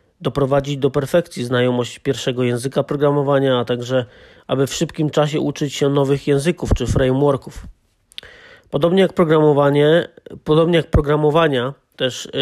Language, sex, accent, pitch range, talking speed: Polish, male, native, 135-155 Hz, 115 wpm